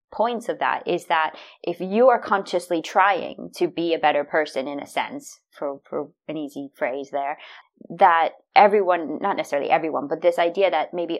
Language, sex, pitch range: English, female, 155-200 Hz